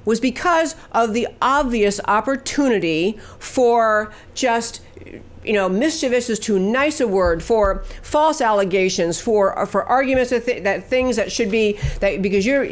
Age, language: 50-69, English